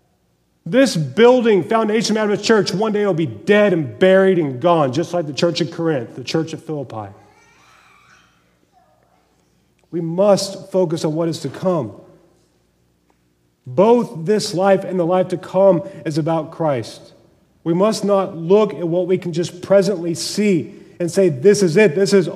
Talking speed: 165 wpm